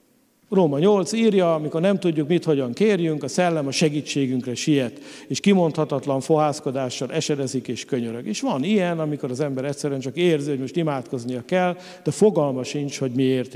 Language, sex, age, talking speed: English, male, 50-69, 170 wpm